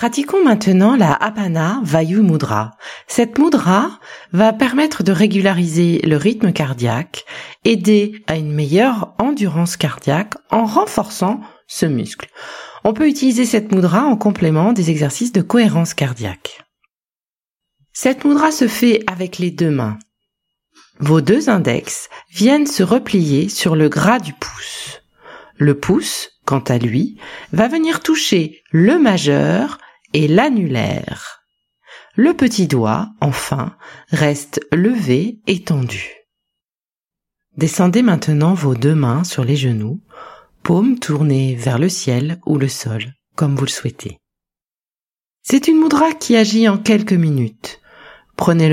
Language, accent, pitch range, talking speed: French, French, 145-220 Hz, 130 wpm